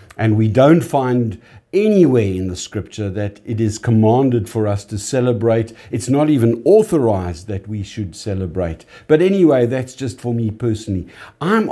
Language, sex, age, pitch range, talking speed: English, male, 60-79, 110-160 Hz, 165 wpm